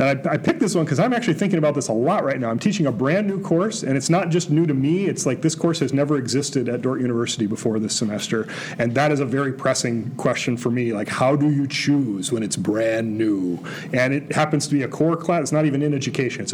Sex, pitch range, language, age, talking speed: male, 135-175 Hz, English, 40-59, 270 wpm